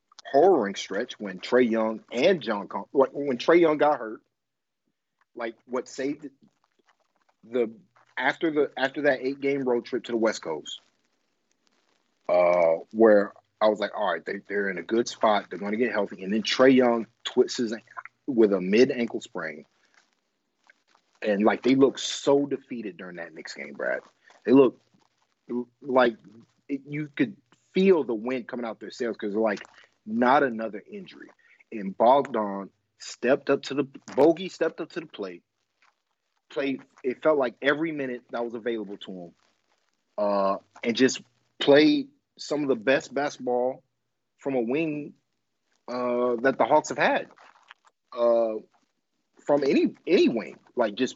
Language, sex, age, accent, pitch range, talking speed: English, male, 40-59, American, 115-150 Hz, 155 wpm